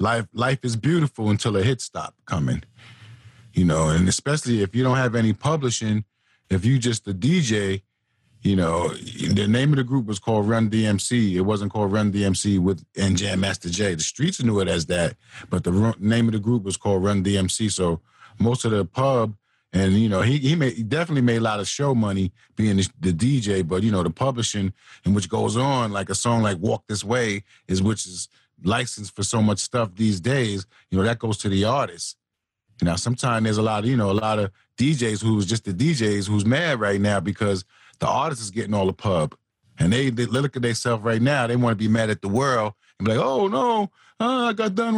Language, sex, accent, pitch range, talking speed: English, male, American, 100-125 Hz, 230 wpm